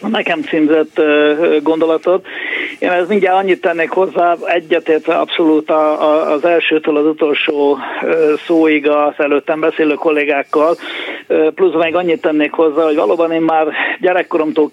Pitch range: 150-165 Hz